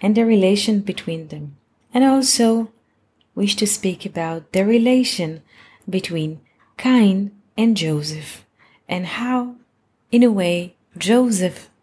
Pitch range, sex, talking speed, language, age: 150-215 Hz, female, 115 wpm, English, 30-49